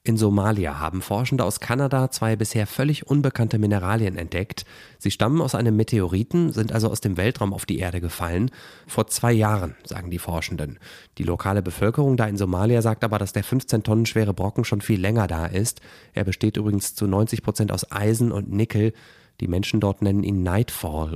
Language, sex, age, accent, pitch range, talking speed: German, male, 30-49, German, 100-125 Hz, 190 wpm